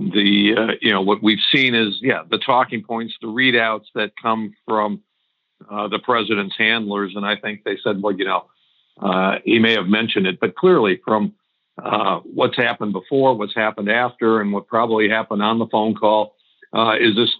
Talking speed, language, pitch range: 195 wpm, English, 110-120 Hz